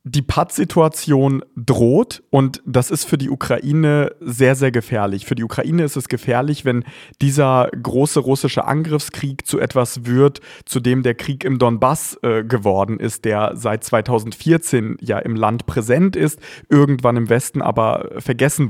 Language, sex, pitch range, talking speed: German, male, 120-145 Hz, 155 wpm